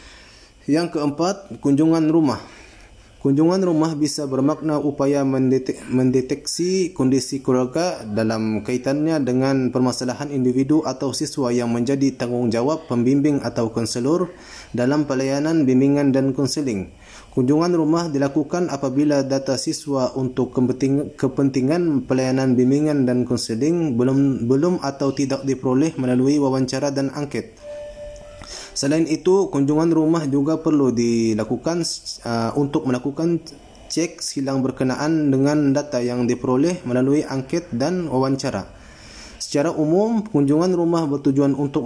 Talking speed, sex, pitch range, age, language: 110 wpm, male, 130-155 Hz, 20-39, Malay